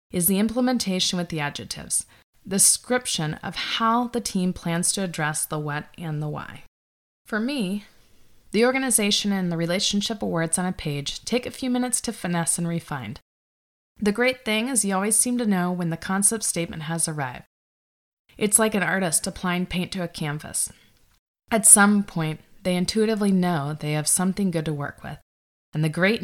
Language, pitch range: English, 150-205 Hz